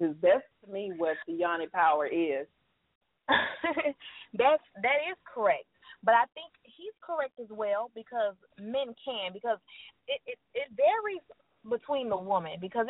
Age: 20-39